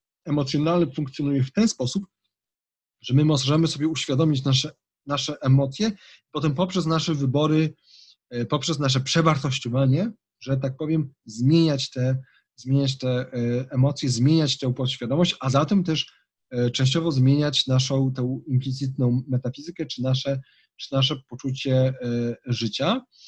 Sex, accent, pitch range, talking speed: male, native, 130-150 Hz, 120 wpm